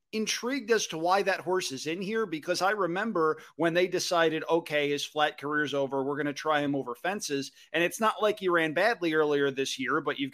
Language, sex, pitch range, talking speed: English, male, 145-190 Hz, 225 wpm